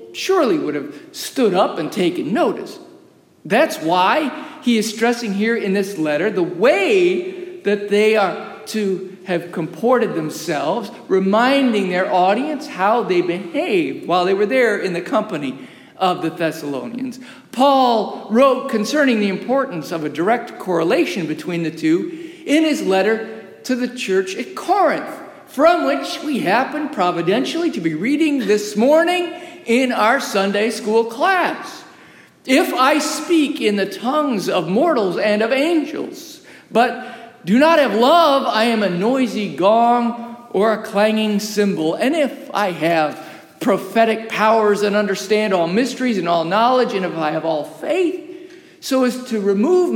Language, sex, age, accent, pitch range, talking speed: English, male, 50-69, American, 195-295 Hz, 150 wpm